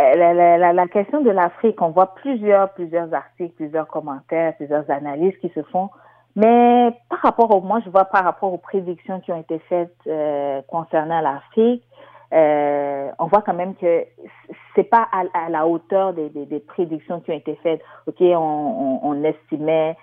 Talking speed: 185 wpm